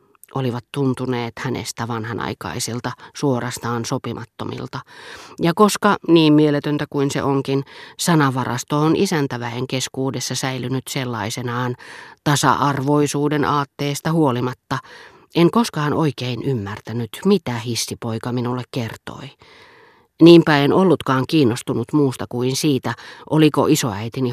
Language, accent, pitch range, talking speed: Finnish, native, 125-155 Hz, 95 wpm